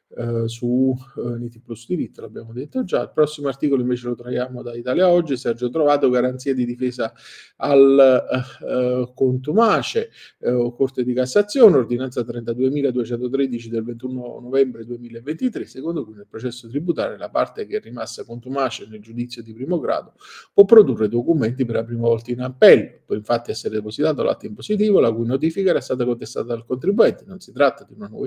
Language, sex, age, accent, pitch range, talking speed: Italian, male, 40-59, native, 120-155 Hz, 170 wpm